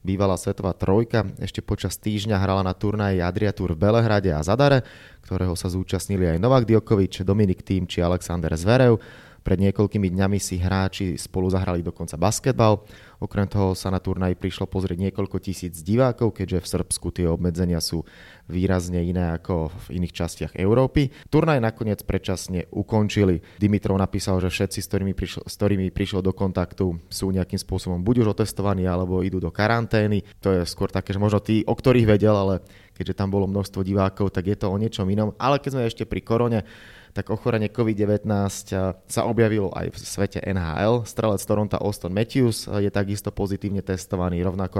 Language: Slovak